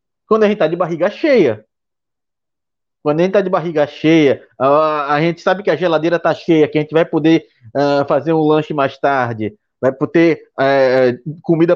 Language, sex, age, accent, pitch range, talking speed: Portuguese, male, 20-39, Brazilian, 125-175 Hz, 195 wpm